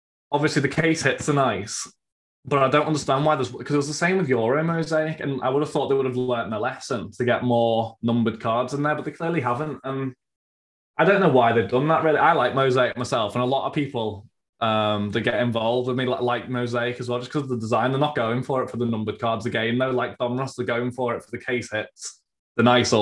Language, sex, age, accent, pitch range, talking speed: English, male, 20-39, British, 115-135 Hz, 265 wpm